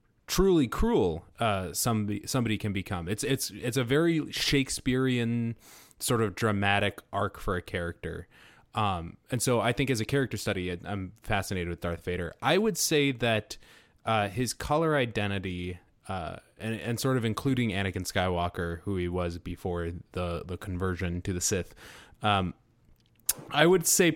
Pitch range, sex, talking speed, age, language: 100-130 Hz, male, 160 wpm, 20-39, English